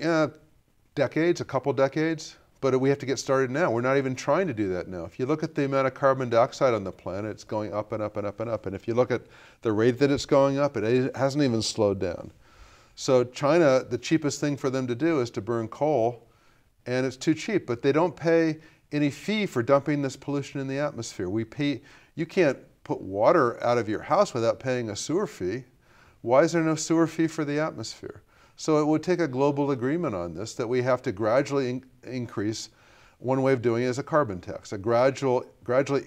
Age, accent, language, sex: 40-59, American, English, male